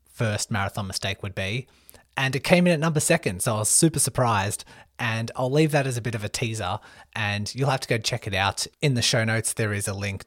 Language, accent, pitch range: English, Australian, 100-120 Hz